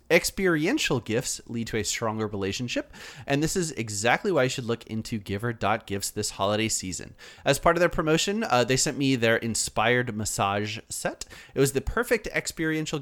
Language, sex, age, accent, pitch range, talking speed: English, male, 30-49, American, 110-145 Hz, 175 wpm